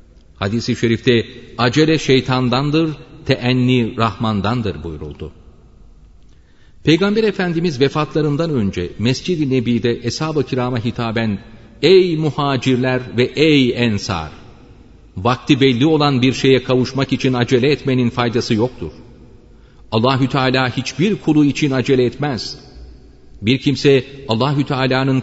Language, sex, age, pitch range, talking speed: Turkish, male, 40-59, 110-145 Hz, 100 wpm